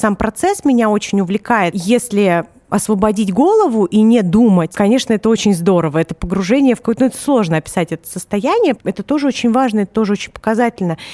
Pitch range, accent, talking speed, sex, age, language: 190-240 Hz, native, 180 wpm, female, 20-39, Russian